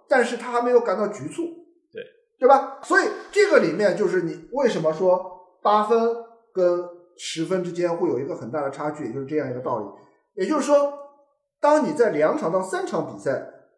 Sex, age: male, 50-69